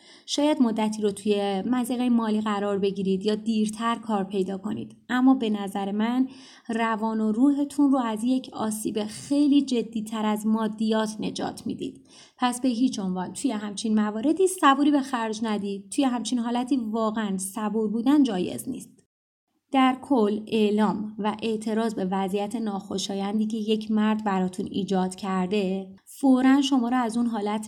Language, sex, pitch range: Persian, female, 210-255 Hz